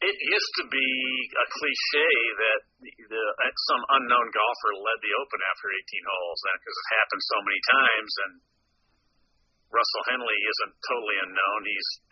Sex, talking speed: male, 155 wpm